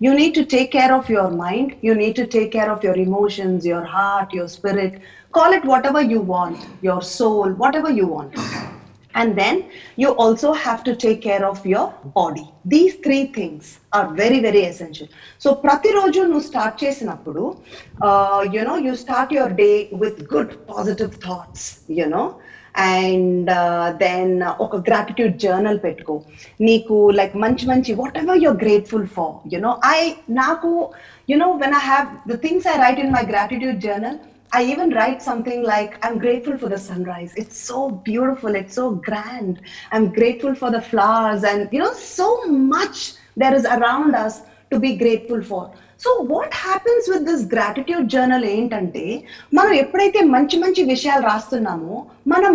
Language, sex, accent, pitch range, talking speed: Telugu, female, native, 205-295 Hz, 175 wpm